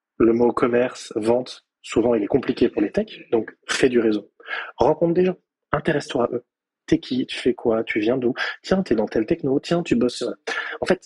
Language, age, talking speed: French, 20-39, 210 wpm